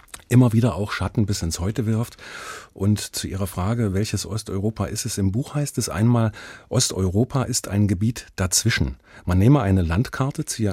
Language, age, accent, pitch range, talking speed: German, 40-59, German, 95-115 Hz, 175 wpm